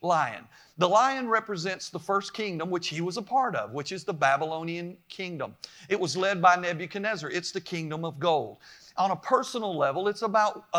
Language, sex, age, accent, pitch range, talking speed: English, male, 50-69, American, 165-195 Hz, 190 wpm